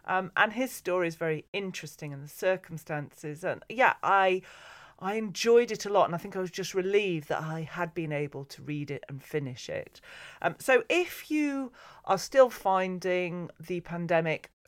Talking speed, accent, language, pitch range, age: 185 wpm, British, English, 150-205 Hz, 40-59